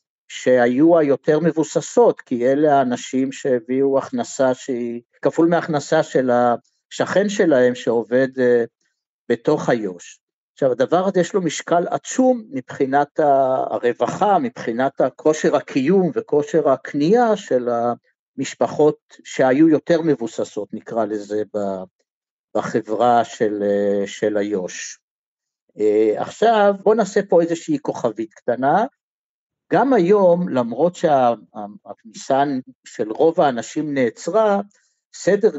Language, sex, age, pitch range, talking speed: Hebrew, male, 50-69, 125-180 Hz, 100 wpm